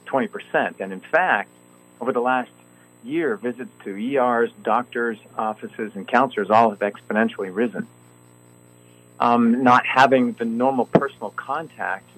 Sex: male